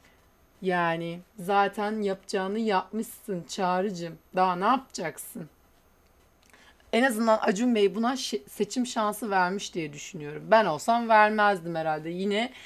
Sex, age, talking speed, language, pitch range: female, 30-49, 110 wpm, Turkish, 185-245 Hz